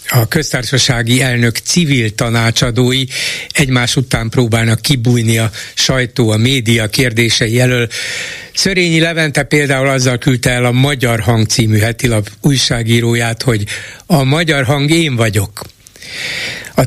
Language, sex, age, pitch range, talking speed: Hungarian, male, 60-79, 115-140 Hz, 120 wpm